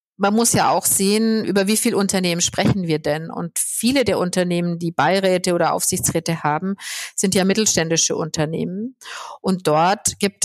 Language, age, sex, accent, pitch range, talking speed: German, 50-69, female, German, 170-200 Hz, 160 wpm